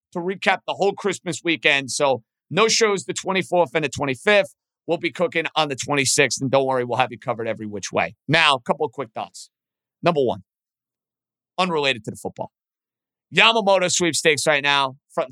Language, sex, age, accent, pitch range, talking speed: English, male, 50-69, American, 160-235 Hz, 185 wpm